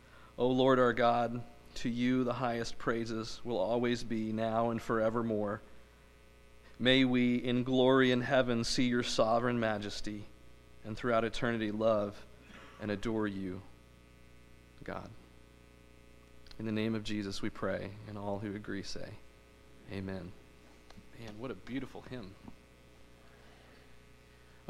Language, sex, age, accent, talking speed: English, male, 40-59, American, 125 wpm